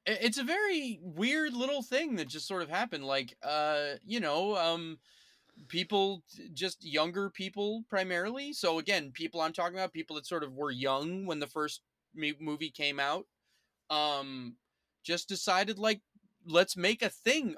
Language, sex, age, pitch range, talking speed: English, male, 20-39, 150-195 Hz, 165 wpm